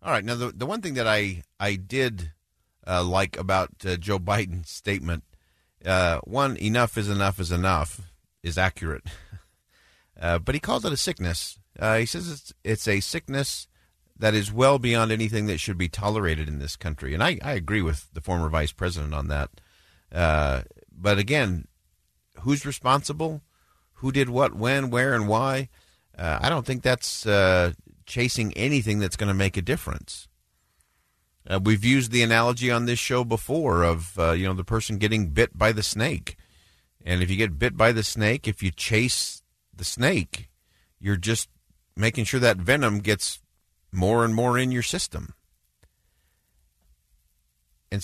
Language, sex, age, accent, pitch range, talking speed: English, male, 50-69, American, 85-115 Hz, 170 wpm